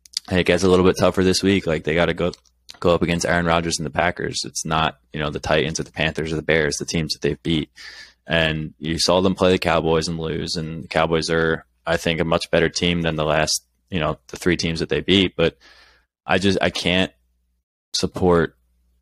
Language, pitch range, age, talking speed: English, 80-90 Hz, 20-39, 235 wpm